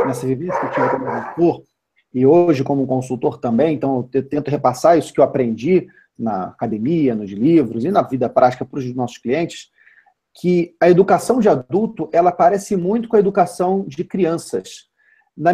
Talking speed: 170 wpm